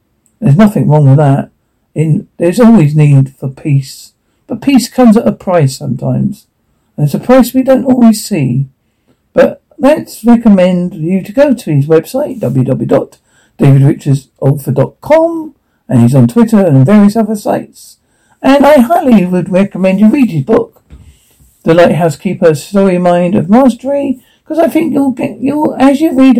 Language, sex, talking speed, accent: English, male, 155 wpm, British